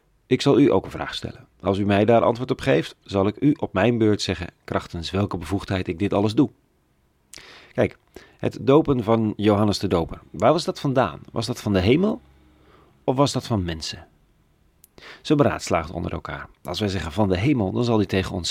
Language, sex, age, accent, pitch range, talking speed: Dutch, male, 40-59, Dutch, 90-120 Hz, 210 wpm